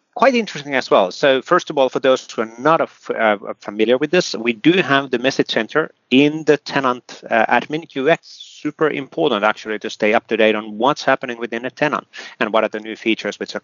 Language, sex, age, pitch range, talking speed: English, male, 30-49, 105-140 Hz, 225 wpm